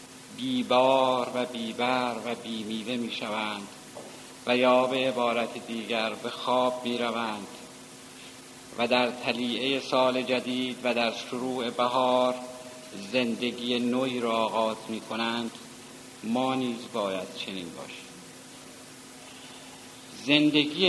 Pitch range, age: 120-130 Hz, 50-69